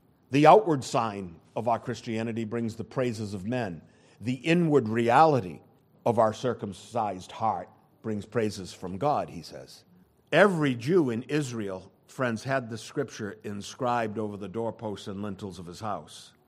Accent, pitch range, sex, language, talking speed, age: American, 110-140 Hz, male, English, 150 wpm, 50-69